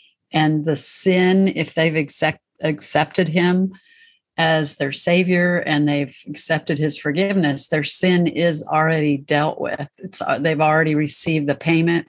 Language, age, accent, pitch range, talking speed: English, 50-69, American, 150-180 Hz, 140 wpm